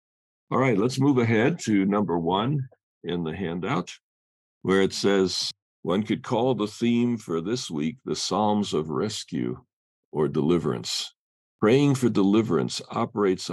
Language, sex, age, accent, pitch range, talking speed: English, male, 50-69, American, 85-105 Hz, 140 wpm